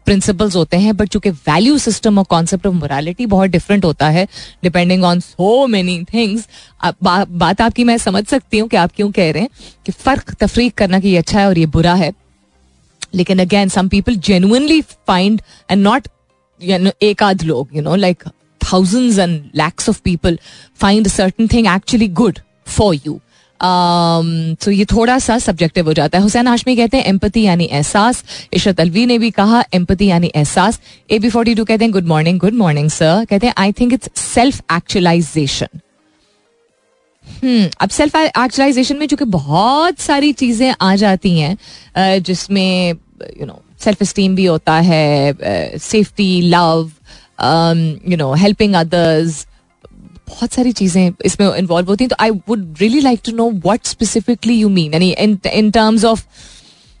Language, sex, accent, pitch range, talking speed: Hindi, female, native, 175-225 Hz, 155 wpm